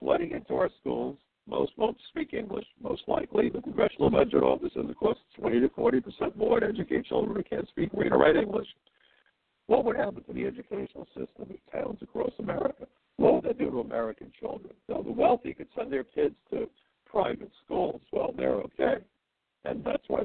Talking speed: 195 wpm